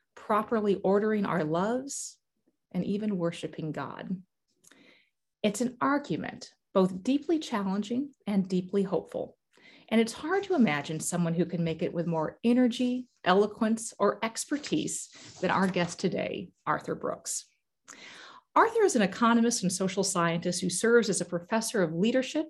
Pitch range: 180-240 Hz